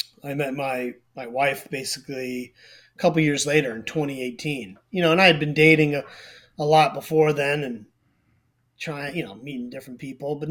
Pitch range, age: 125-155 Hz, 30-49